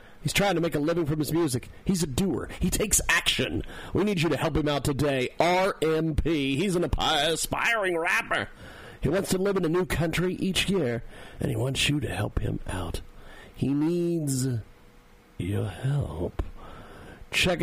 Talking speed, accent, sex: 175 wpm, American, male